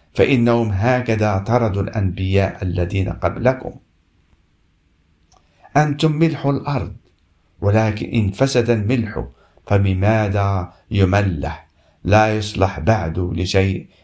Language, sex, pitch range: Arabic, male, 90-110 Hz